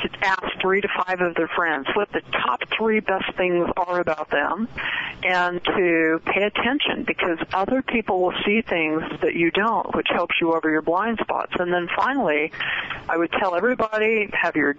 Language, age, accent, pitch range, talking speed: English, 40-59, American, 165-205 Hz, 185 wpm